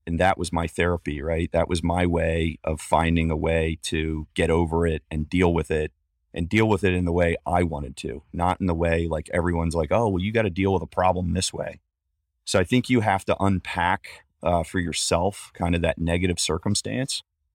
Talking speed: 220 wpm